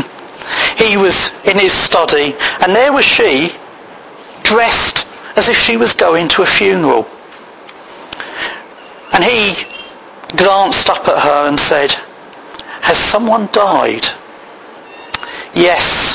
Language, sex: English, male